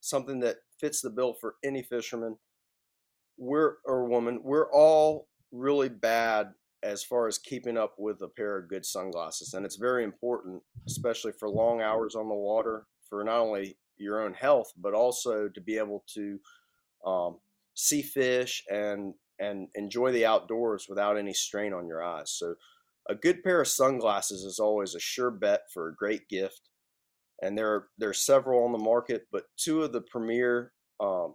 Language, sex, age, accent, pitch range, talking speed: English, male, 30-49, American, 105-125 Hz, 180 wpm